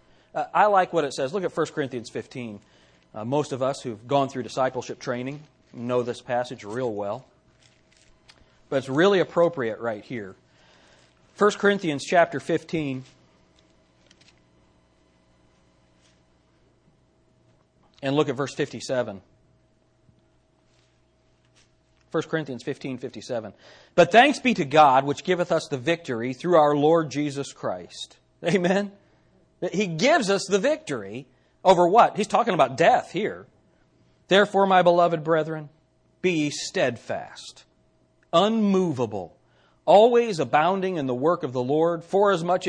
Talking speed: 120 wpm